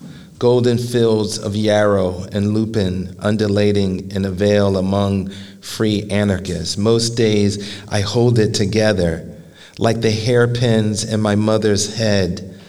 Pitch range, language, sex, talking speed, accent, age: 95-110 Hz, English, male, 125 wpm, American, 40-59